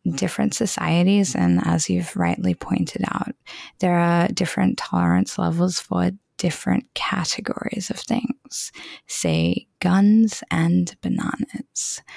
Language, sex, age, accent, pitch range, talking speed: English, female, 20-39, American, 180-245 Hz, 110 wpm